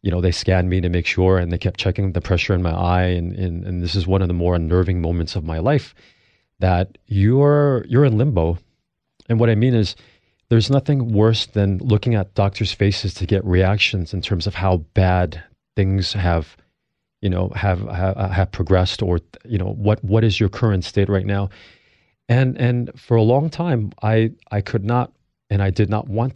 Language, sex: English, male